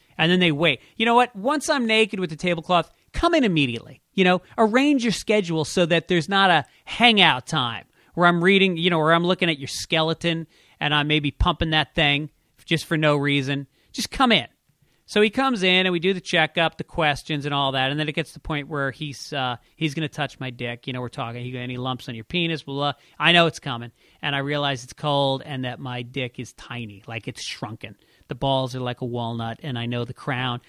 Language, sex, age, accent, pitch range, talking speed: English, male, 40-59, American, 130-180 Hz, 240 wpm